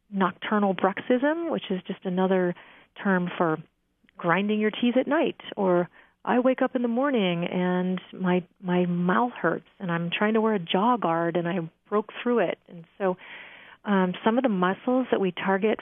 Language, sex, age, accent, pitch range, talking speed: English, female, 30-49, American, 180-220 Hz, 180 wpm